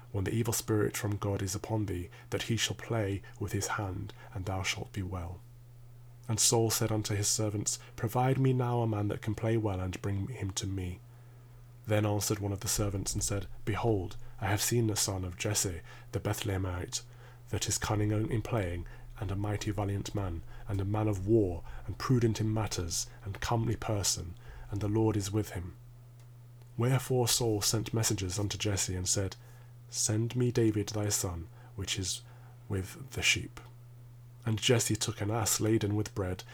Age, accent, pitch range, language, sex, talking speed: 30-49, British, 100-120 Hz, English, male, 185 wpm